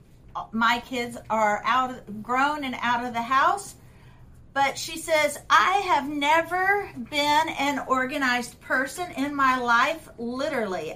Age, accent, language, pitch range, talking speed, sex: 50-69, American, English, 230-280 Hz, 130 wpm, female